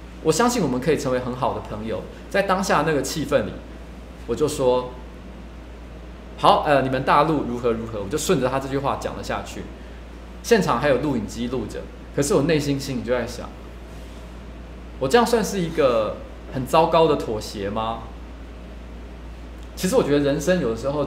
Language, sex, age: Chinese, male, 20-39